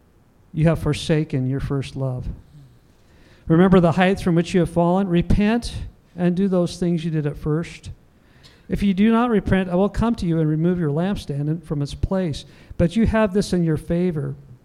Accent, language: American, English